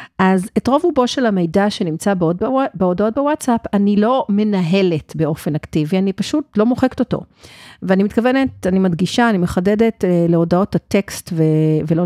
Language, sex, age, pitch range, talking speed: Hebrew, female, 50-69, 170-215 Hz, 150 wpm